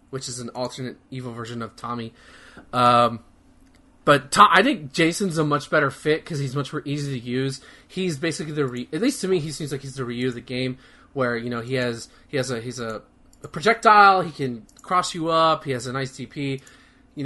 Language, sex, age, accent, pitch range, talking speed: English, male, 20-39, American, 130-165 Hz, 225 wpm